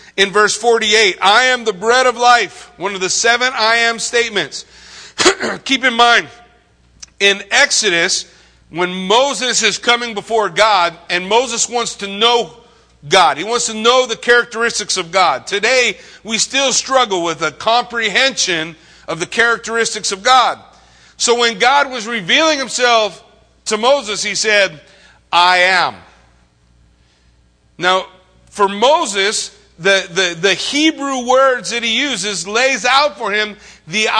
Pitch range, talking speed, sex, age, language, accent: 190-240 Hz, 140 wpm, male, 50-69, English, American